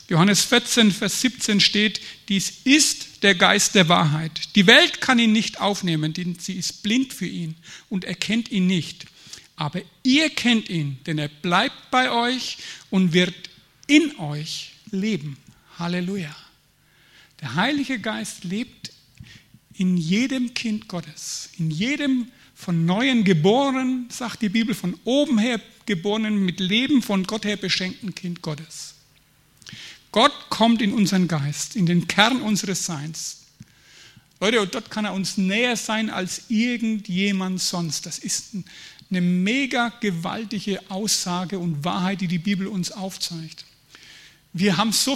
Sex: male